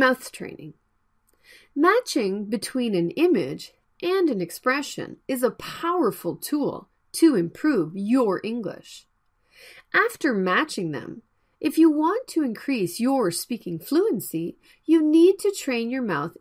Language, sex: Korean, female